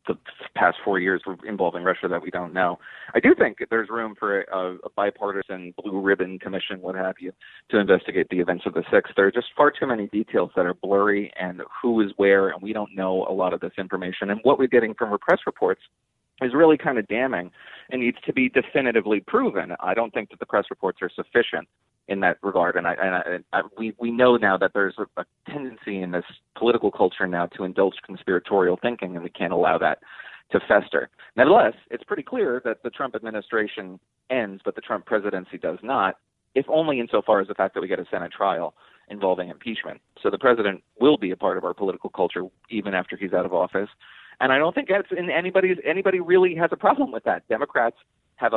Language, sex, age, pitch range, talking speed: English, male, 30-49, 95-130 Hz, 220 wpm